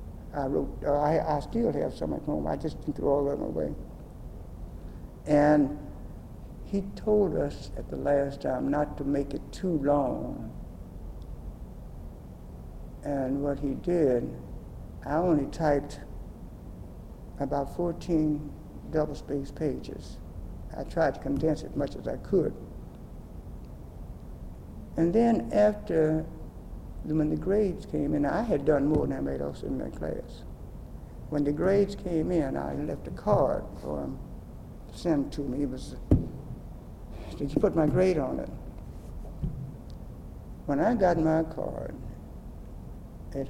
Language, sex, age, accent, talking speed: English, male, 60-79, American, 140 wpm